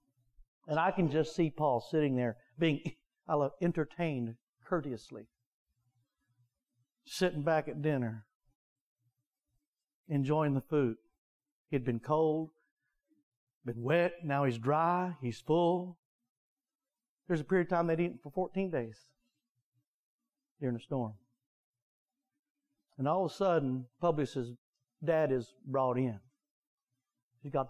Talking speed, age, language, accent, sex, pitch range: 120 wpm, 60-79, English, American, male, 125-175 Hz